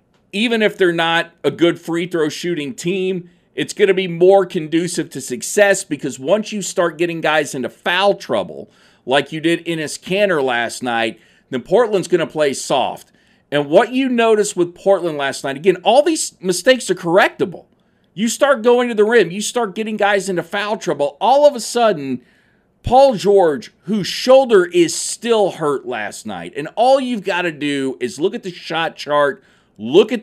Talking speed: 185 wpm